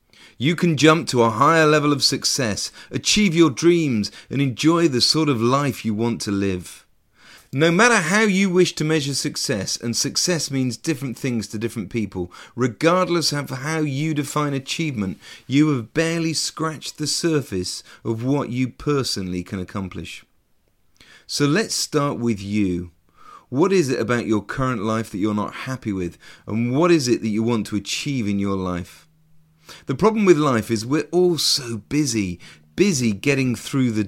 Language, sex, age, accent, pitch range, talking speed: English, male, 30-49, British, 110-155 Hz, 175 wpm